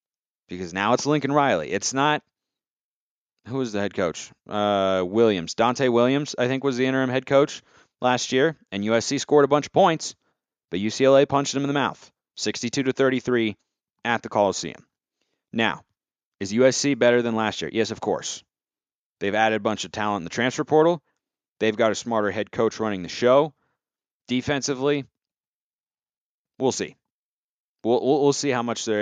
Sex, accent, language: male, American, English